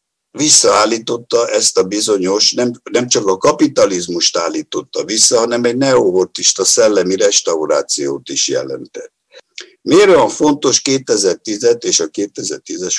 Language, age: Hungarian, 60-79